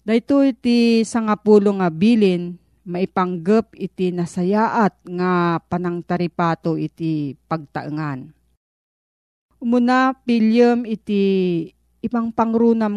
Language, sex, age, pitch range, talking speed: Filipino, female, 40-59, 170-230 Hz, 75 wpm